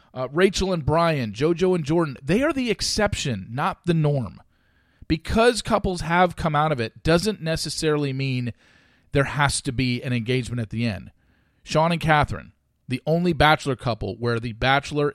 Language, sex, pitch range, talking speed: English, male, 110-165 Hz, 170 wpm